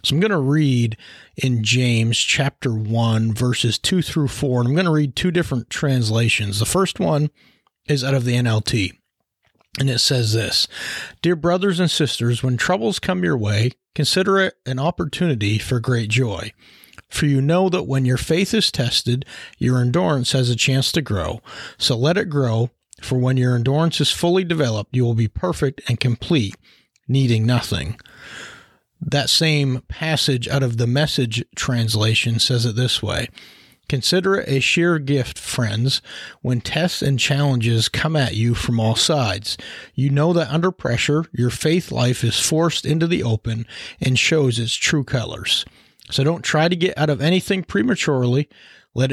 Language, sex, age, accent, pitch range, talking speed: English, male, 40-59, American, 120-155 Hz, 170 wpm